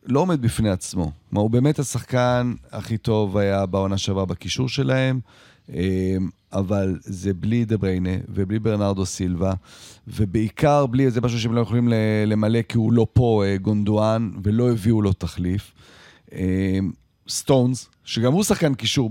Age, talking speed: 30-49, 140 wpm